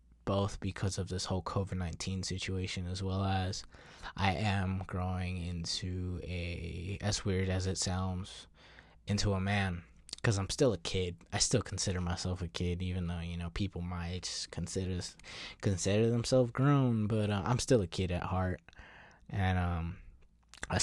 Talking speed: 160 wpm